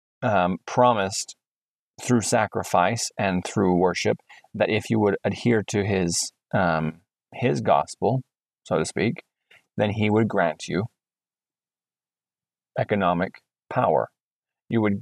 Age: 30-49